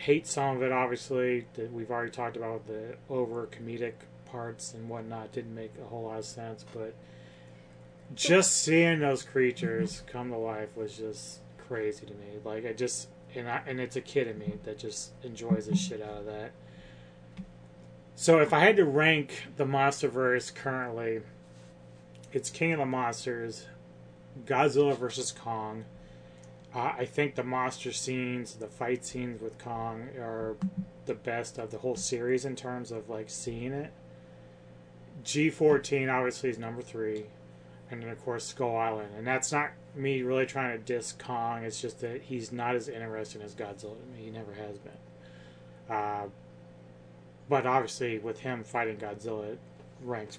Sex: male